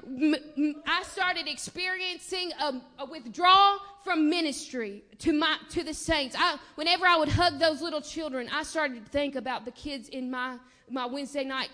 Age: 20-39